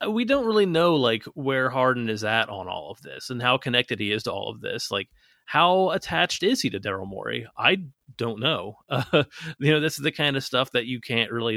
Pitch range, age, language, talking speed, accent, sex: 110-135 Hz, 30-49, English, 240 wpm, American, male